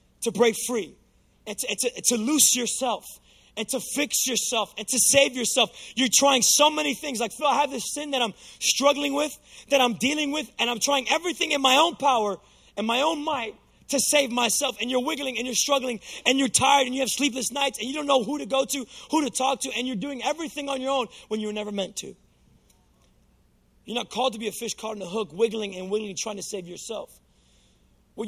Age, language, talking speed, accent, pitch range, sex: 20-39, English, 230 wpm, American, 220-275 Hz, male